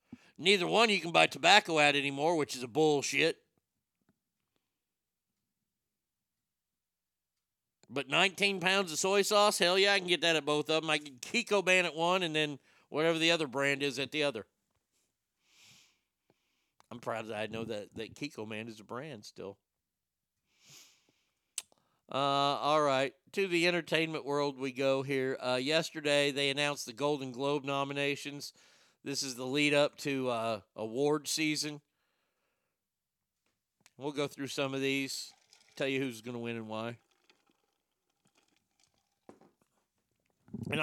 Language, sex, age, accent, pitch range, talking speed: English, male, 50-69, American, 135-170 Hz, 145 wpm